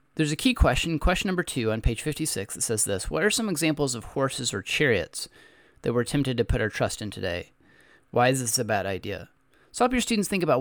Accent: American